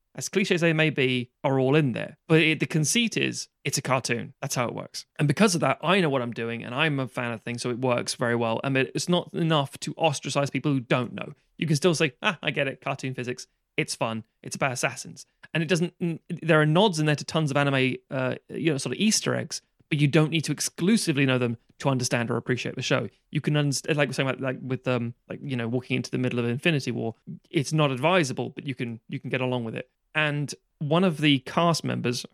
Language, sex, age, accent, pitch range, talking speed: English, male, 30-49, British, 125-160 Hz, 255 wpm